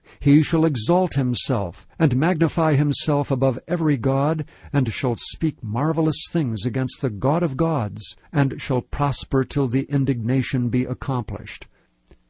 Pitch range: 120-150 Hz